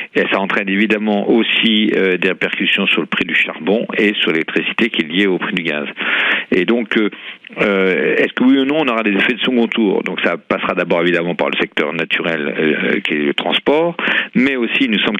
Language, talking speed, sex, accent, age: French, 225 wpm, male, French, 50-69